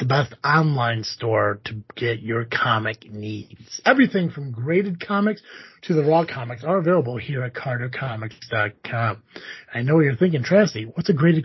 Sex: male